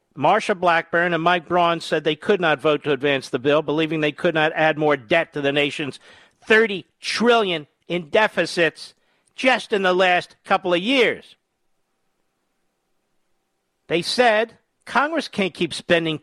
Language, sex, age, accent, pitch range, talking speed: English, male, 50-69, American, 160-210 Hz, 150 wpm